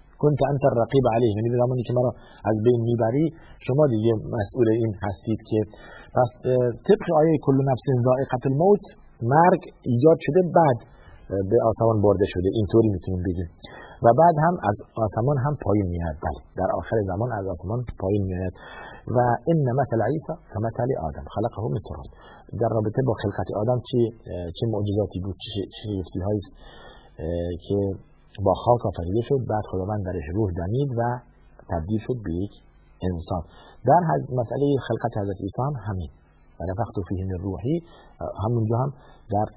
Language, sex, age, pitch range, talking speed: Persian, male, 50-69, 95-125 Hz, 155 wpm